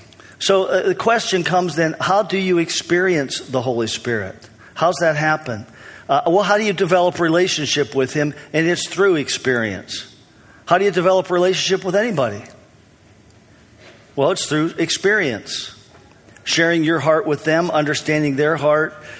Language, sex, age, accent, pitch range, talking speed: English, male, 50-69, American, 140-175 Hz, 150 wpm